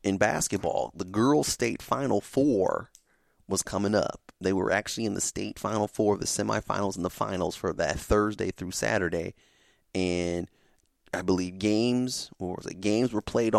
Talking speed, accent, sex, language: 165 wpm, American, male, English